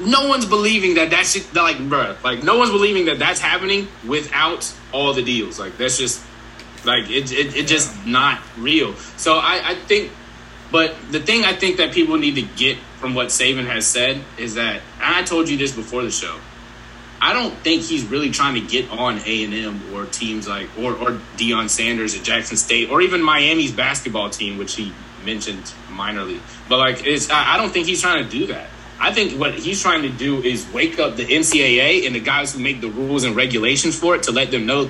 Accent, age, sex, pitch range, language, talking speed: American, 20-39, male, 120-175 Hz, English, 215 wpm